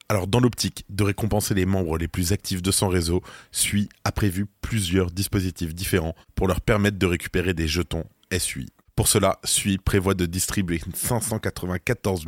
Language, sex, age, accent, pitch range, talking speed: French, male, 20-39, French, 90-105 Hz, 165 wpm